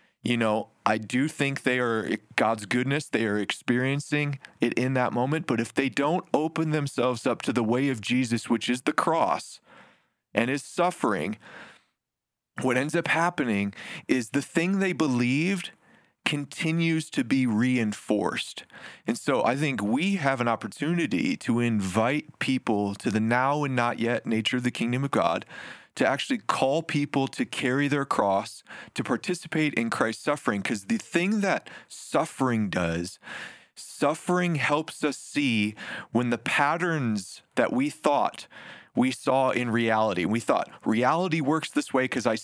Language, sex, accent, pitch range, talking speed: English, male, American, 120-170 Hz, 160 wpm